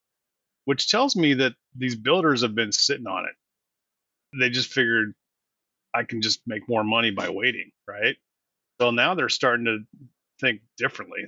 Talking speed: 160 wpm